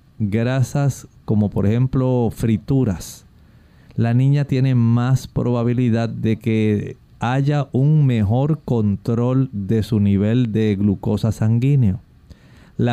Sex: male